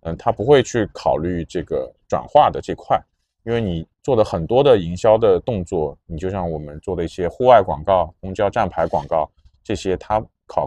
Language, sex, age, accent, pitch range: Chinese, male, 20-39, native, 85-115 Hz